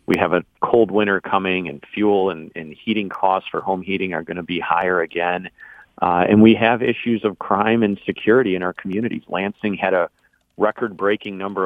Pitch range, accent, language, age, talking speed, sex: 90-100 Hz, American, English, 40-59, 195 wpm, male